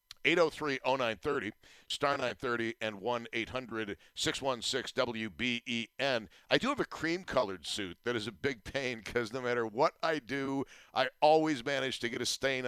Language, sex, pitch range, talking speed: English, male, 115-140 Hz, 135 wpm